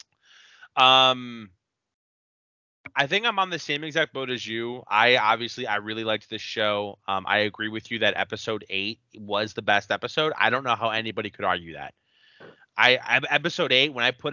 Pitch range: 105-135 Hz